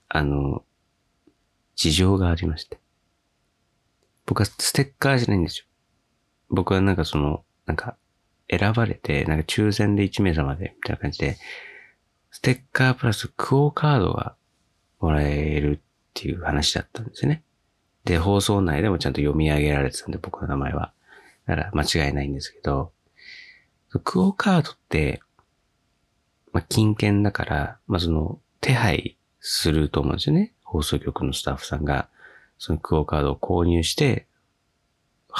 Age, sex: 40-59, male